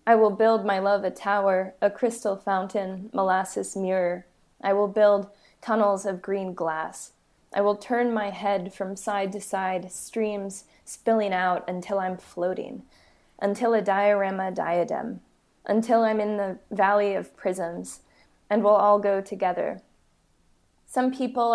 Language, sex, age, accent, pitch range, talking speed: English, female, 20-39, American, 190-210 Hz, 145 wpm